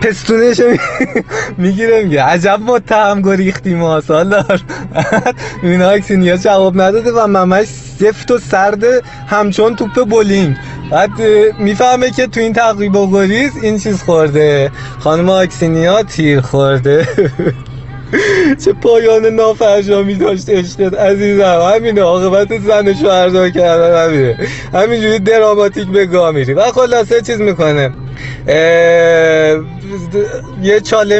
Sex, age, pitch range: male, 20-39, 160-210 Hz